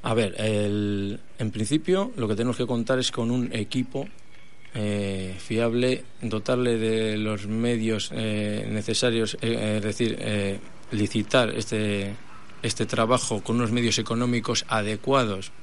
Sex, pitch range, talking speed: male, 100-115 Hz, 140 wpm